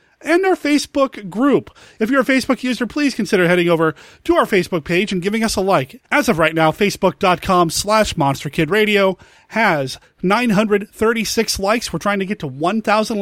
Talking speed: 175 wpm